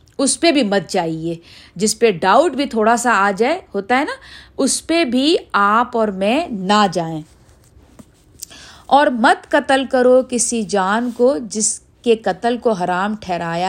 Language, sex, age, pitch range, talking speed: Urdu, female, 50-69, 195-250 Hz, 160 wpm